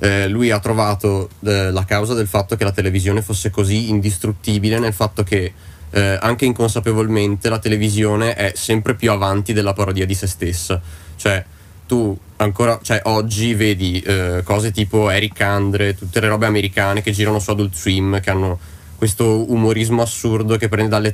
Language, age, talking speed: Italian, 20-39, 170 wpm